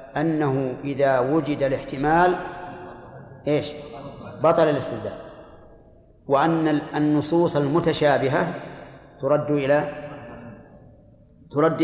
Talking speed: 65 wpm